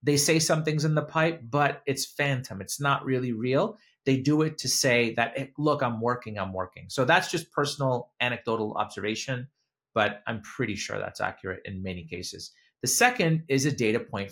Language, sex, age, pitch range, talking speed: English, male, 30-49, 115-160 Hz, 190 wpm